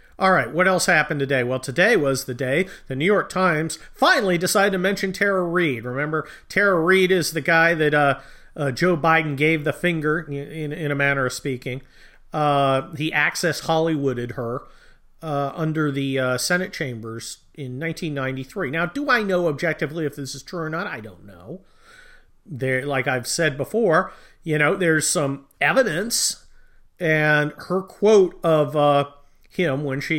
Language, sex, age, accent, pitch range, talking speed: English, male, 40-59, American, 140-185 Hz, 175 wpm